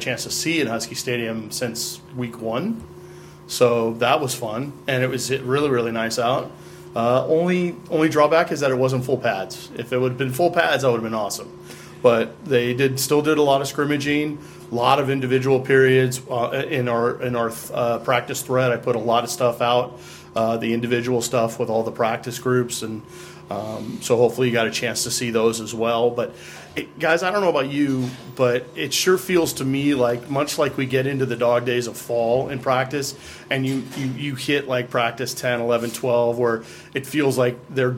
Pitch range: 120-135 Hz